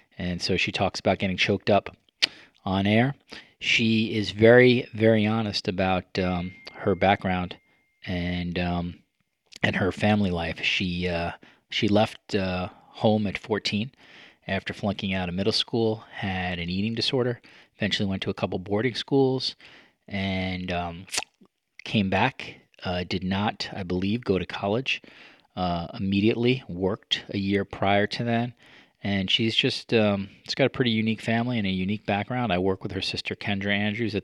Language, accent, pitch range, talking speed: English, American, 95-115 Hz, 160 wpm